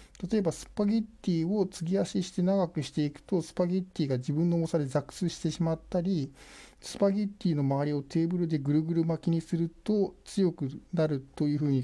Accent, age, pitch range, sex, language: native, 50-69, 140-185 Hz, male, Japanese